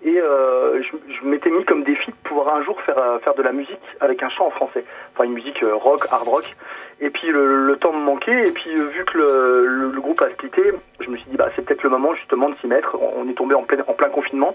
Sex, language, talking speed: male, French, 280 wpm